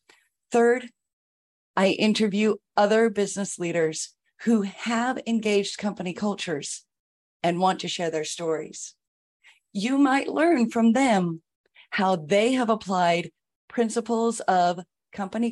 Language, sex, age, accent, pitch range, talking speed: English, female, 40-59, American, 180-235 Hz, 110 wpm